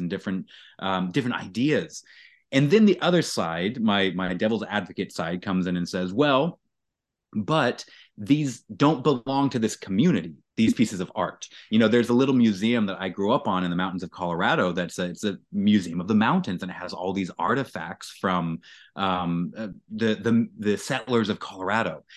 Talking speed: 190 wpm